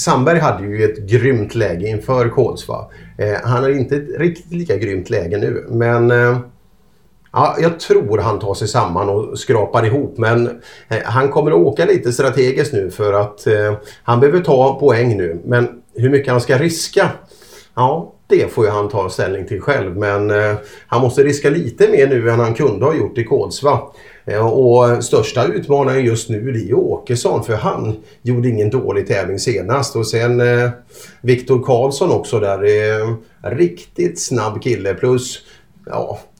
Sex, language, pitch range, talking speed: male, Swedish, 105-130 Hz, 170 wpm